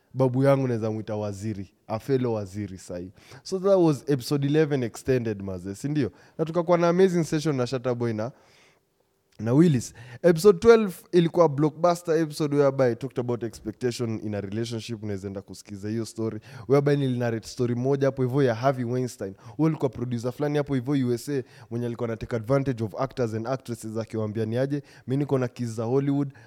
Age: 20-39